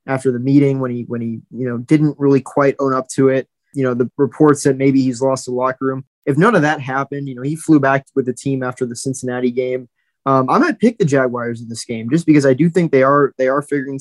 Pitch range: 125-145 Hz